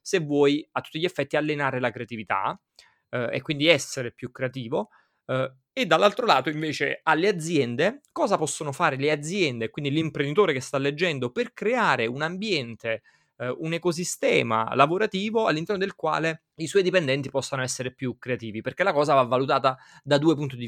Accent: native